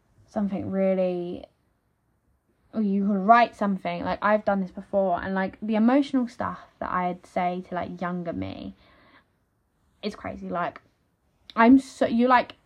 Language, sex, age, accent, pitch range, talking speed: English, female, 10-29, British, 185-230 Hz, 145 wpm